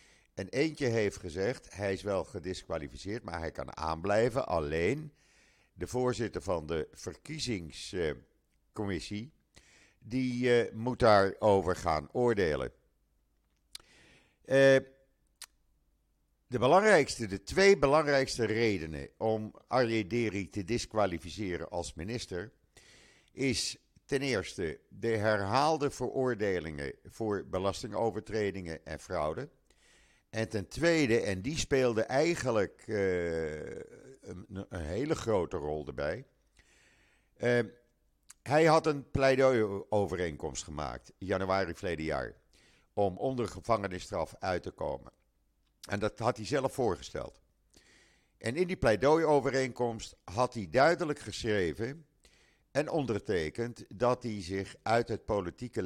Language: Dutch